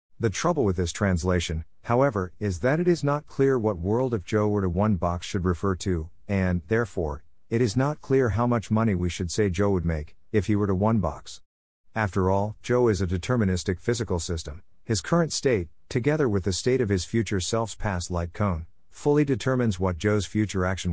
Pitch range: 90-120 Hz